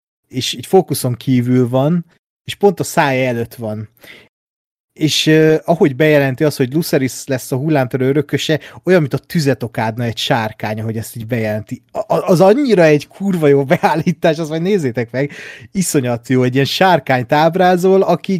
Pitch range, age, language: 125-170 Hz, 30-49, Hungarian